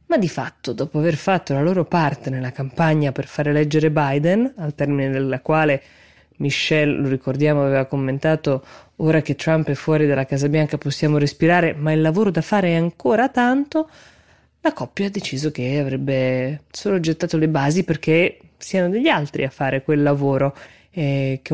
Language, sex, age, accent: Italian, female, 20-39, native